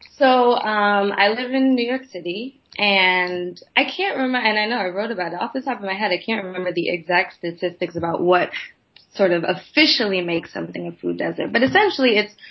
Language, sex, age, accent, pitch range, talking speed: English, female, 20-39, American, 185-235 Hz, 210 wpm